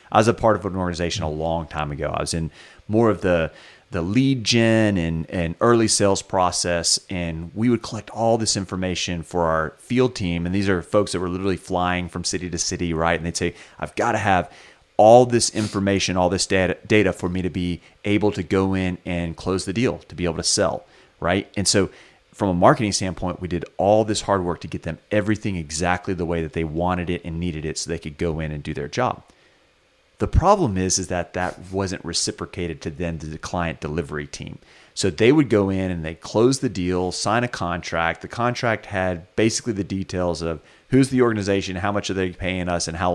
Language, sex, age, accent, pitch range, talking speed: English, male, 30-49, American, 85-105 Hz, 225 wpm